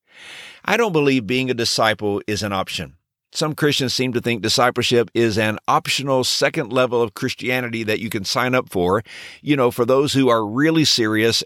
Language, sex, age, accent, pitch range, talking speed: English, male, 50-69, American, 105-135 Hz, 190 wpm